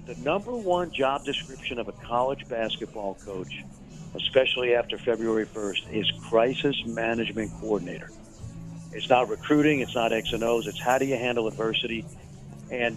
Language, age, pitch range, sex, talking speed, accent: English, 60-79, 115-145 Hz, male, 155 wpm, American